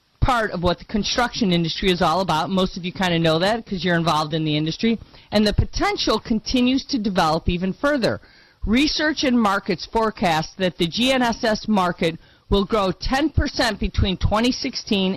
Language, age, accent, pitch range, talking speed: English, 40-59, American, 170-230 Hz, 170 wpm